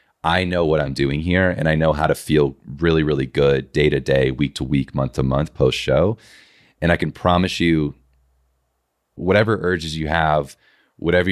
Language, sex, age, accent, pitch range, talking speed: English, male, 30-49, American, 70-85 Hz, 190 wpm